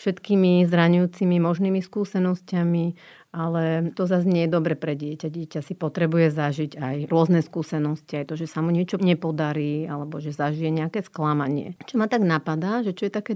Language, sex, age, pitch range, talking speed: Slovak, female, 40-59, 160-190 Hz, 175 wpm